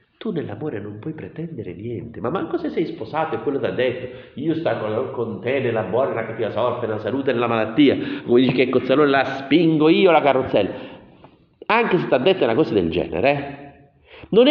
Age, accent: 50-69, native